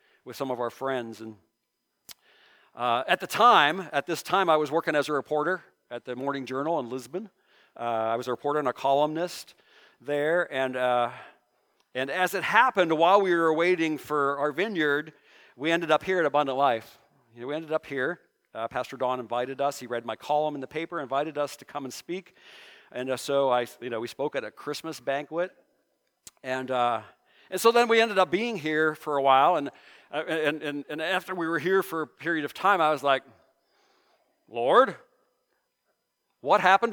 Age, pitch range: 50-69, 135-180 Hz